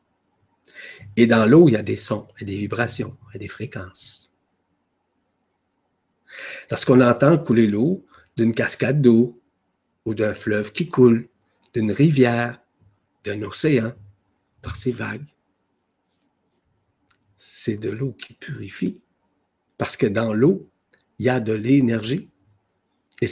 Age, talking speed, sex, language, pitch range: 50-69, 135 wpm, male, French, 105-130 Hz